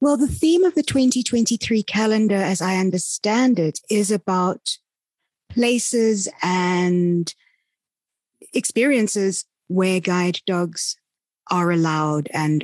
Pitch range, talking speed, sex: 165-220 Hz, 105 wpm, female